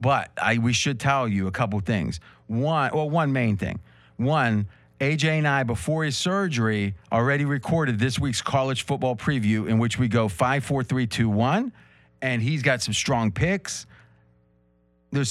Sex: male